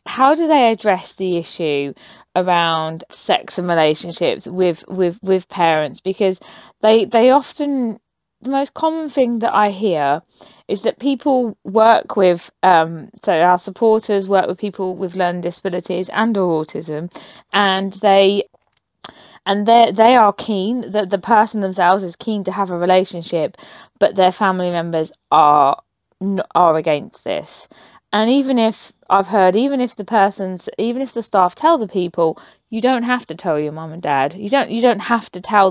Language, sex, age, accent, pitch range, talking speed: English, female, 20-39, British, 180-225 Hz, 165 wpm